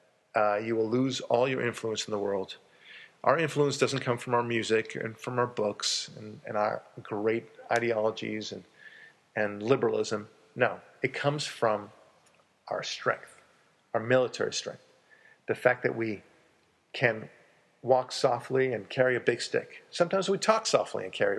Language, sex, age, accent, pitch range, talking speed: English, male, 50-69, American, 115-165 Hz, 155 wpm